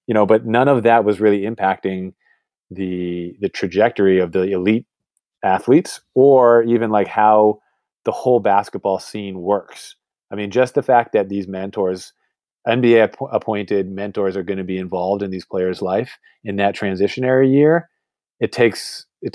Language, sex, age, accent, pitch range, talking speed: English, male, 30-49, American, 95-115 Hz, 160 wpm